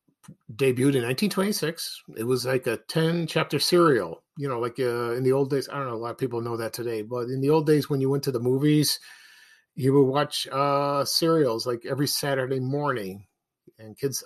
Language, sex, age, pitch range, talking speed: English, male, 50-69, 125-160 Hz, 210 wpm